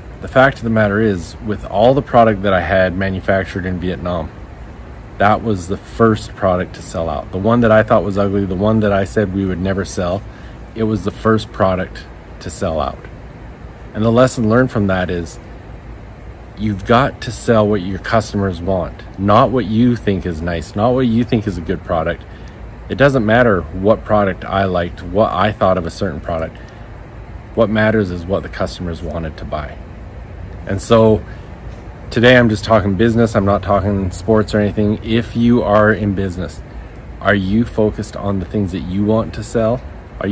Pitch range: 95-110 Hz